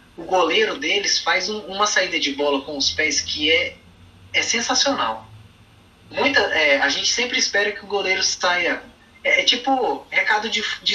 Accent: Brazilian